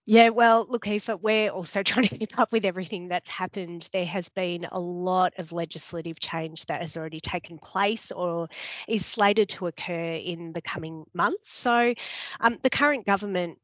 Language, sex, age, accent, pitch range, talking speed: English, female, 20-39, Australian, 155-190 Hz, 180 wpm